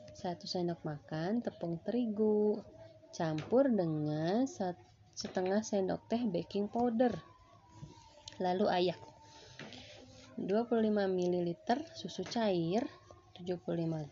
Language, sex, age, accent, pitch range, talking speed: Indonesian, female, 20-39, native, 160-210 Hz, 80 wpm